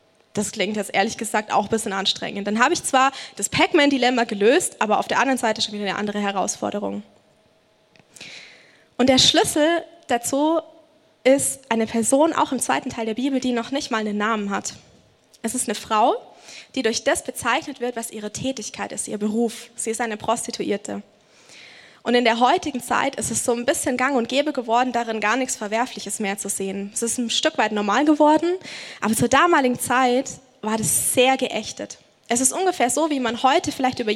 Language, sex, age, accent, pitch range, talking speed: German, female, 20-39, German, 225-295 Hz, 195 wpm